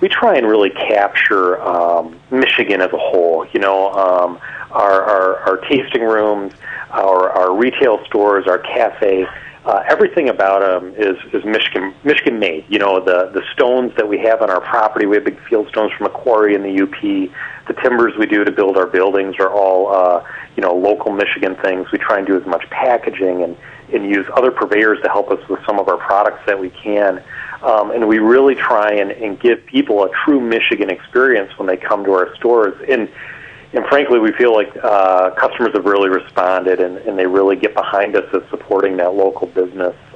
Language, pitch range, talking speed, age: English, 90-105 Hz, 205 wpm, 40-59